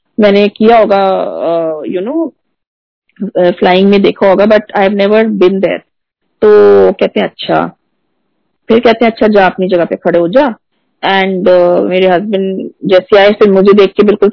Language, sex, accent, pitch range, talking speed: Hindi, female, native, 190-230 Hz, 155 wpm